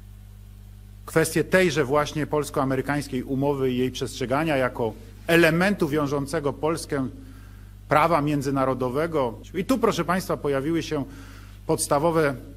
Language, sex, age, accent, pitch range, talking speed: Polish, male, 40-59, native, 120-165 Hz, 100 wpm